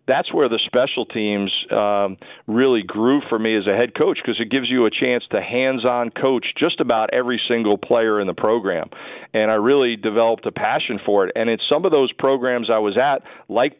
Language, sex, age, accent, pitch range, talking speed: English, male, 40-59, American, 105-120 Hz, 215 wpm